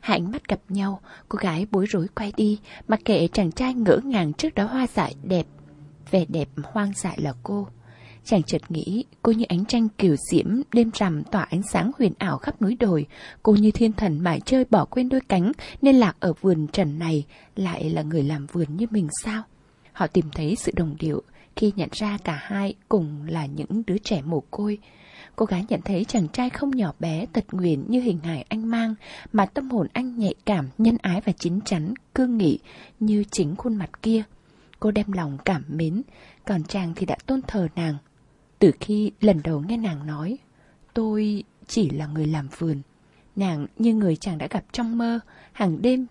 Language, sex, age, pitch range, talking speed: Vietnamese, female, 20-39, 165-220 Hz, 205 wpm